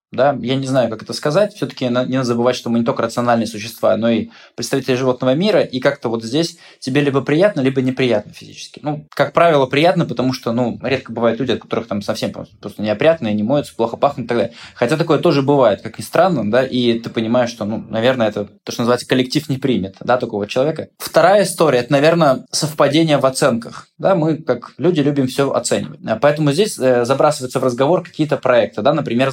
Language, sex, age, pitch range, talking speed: Russian, male, 20-39, 125-155 Hz, 210 wpm